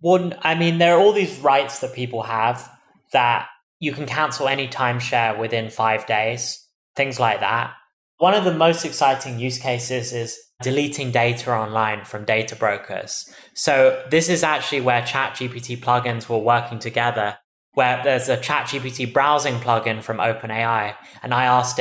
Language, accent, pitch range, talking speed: English, British, 115-145 Hz, 155 wpm